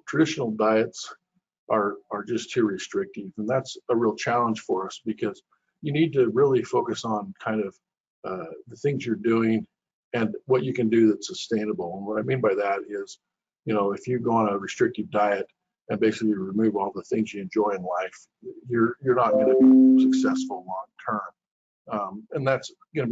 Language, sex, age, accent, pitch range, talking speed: English, male, 50-69, American, 110-170 Hz, 185 wpm